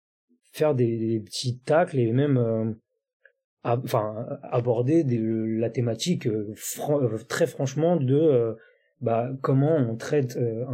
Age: 30-49